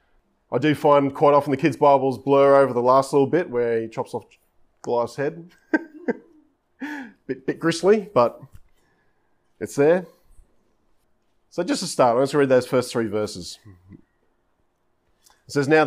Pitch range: 120-150 Hz